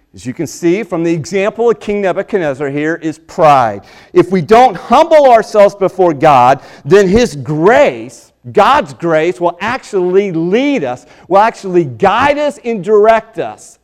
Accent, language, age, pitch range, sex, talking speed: American, English, 40-59, 110-180 Hz, male, 155 wpm